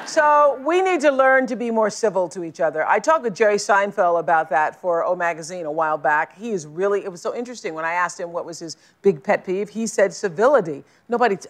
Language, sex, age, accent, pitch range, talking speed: English, female, 50-69, American, 170-235 Hz, 240 wpm